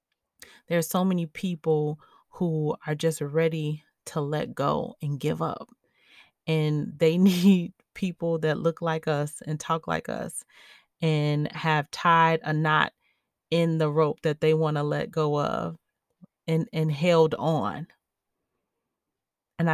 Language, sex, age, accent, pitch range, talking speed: English, female, 30-49, American, 150-175 Hz, 145 wpm